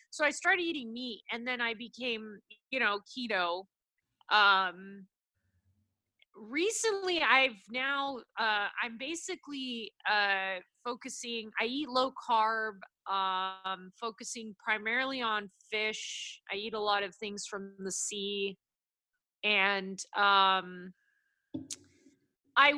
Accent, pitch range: American, 190-245 Hz